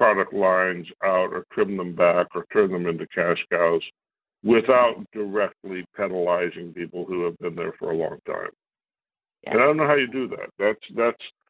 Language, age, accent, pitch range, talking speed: English, 60-79, American, 95-135 Hz, 185 wpm